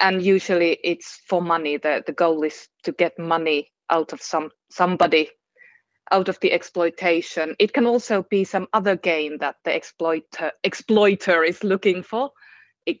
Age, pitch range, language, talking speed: 20-39, 160-200 Hz, Finnish, 160 wpm